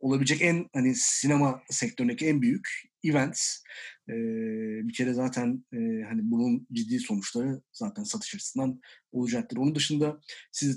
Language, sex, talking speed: Turkish, male, 135 wpm